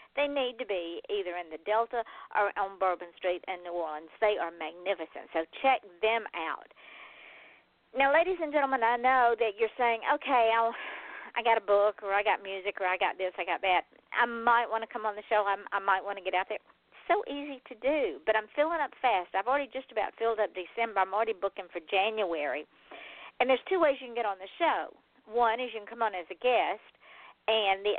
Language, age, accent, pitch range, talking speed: English, 50-69, American, 190-250 Hz, 230 wpm